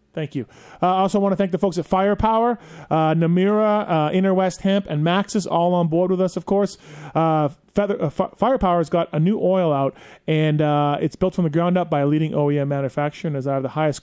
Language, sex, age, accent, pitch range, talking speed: English, male, 30-49, American, 150-185 Hz, 240 wpm